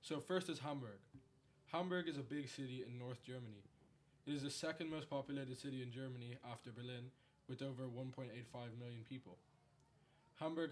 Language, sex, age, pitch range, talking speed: English, male, 20-39, 120-140 Hz, 160 wpm